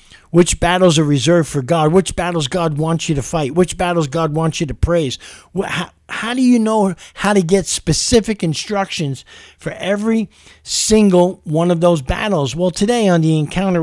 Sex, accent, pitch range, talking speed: male, American, 145-185 Hz, 180 wpm